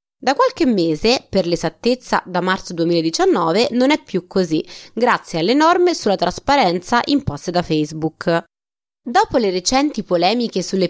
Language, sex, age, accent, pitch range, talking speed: Italian, female, 20-39, native, 170-275 Hz, 140 wpm